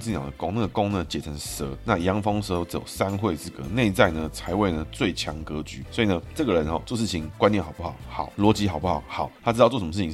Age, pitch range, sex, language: 20-39, 80-110 Hz, male, Chinese